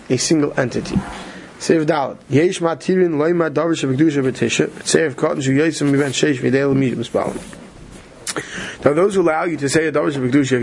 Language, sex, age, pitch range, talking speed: English, male, 20-39, 135-170 Hz, 70 wpm